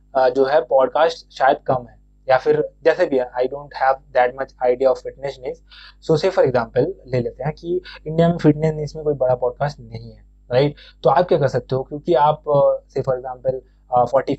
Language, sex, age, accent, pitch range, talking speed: Hindi, male, 20-39, native, 130-155 Hz, 170 wpm